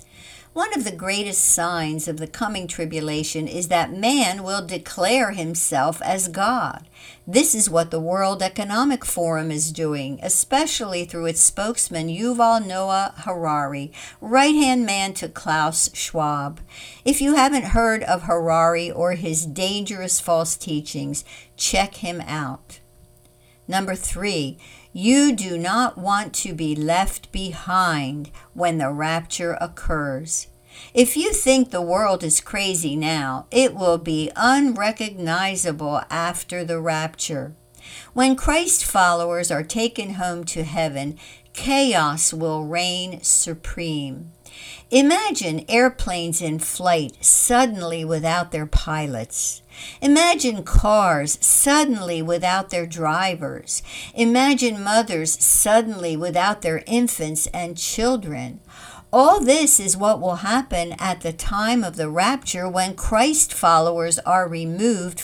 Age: 60-79